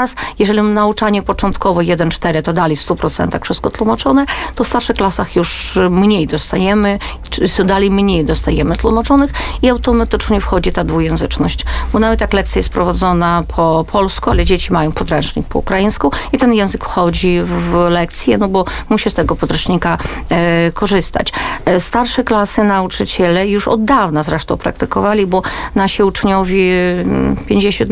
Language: Polish